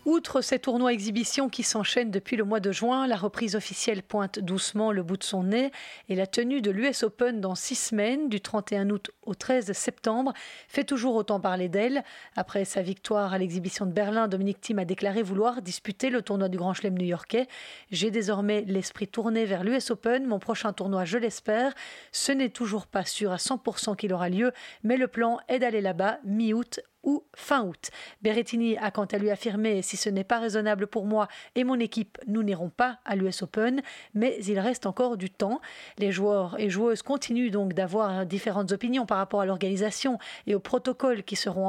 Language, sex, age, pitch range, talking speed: French, female, 40-59, 200-240 Hz, 200 wpm